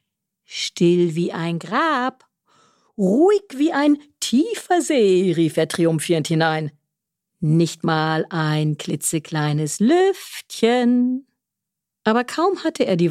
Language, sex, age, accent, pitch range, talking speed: German, female, 50-69, German, 165-235 Hz, 105 wpm